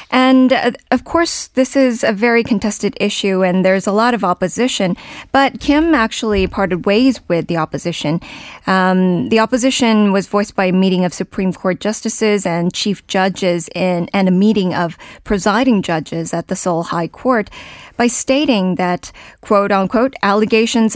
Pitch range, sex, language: 180-235 Hz, female, English